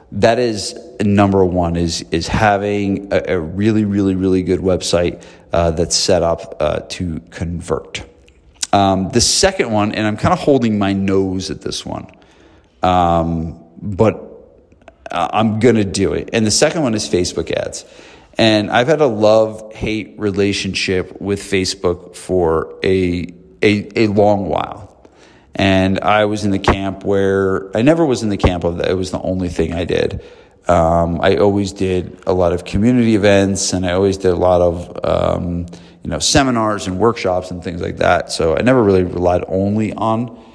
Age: 40-59